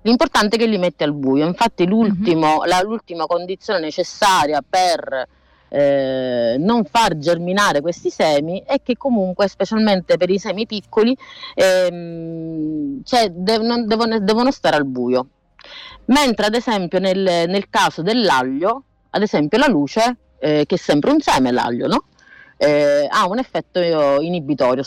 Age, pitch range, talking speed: 30-49, 150-215 Hz, 125 wpm